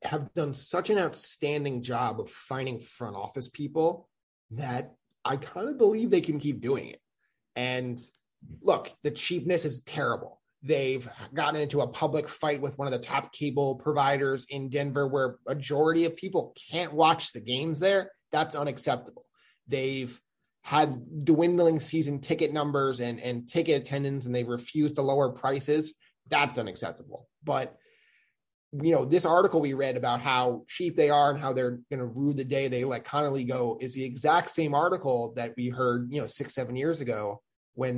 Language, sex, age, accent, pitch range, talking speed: English, male, 20-39, American, 125-155 Hz, 175 wpm